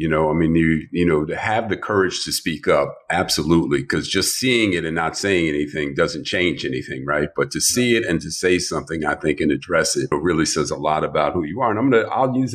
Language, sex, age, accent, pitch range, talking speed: English, male, 50-69, American, 80-95 Hz, 245 wpm